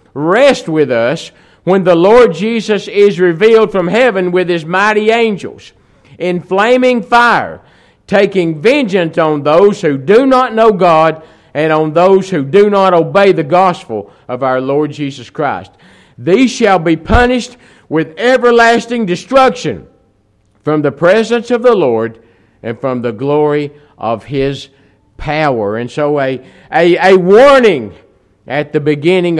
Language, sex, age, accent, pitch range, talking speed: English, male, 50-69, American, 115-180 Hz, 140 wpm